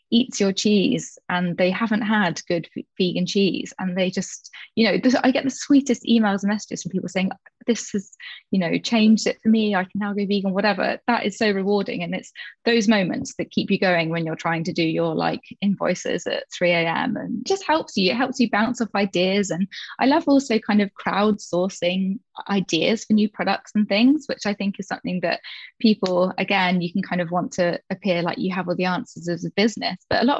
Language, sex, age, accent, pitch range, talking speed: English, female, 20-39, British, 185-235 Hz, 220 wpm